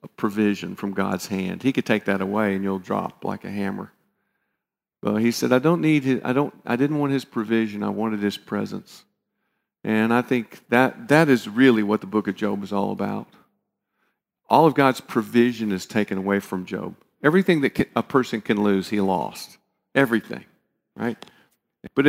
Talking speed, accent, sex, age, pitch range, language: 185 wpm, American, male, 50-69, 100-130 Hz, English